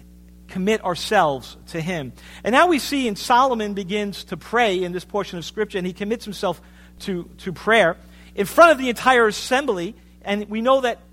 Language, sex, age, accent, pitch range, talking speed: English, male, 50-69, American, 190-255 Hz, 190 wpm